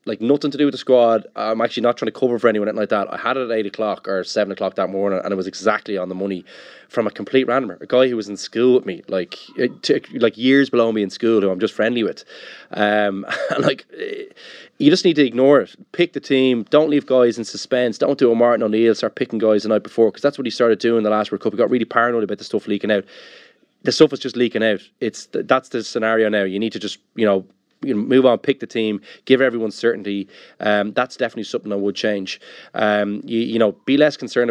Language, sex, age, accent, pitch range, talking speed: English, male, 20-39, Irish, 105-130 Hz, 260 wpm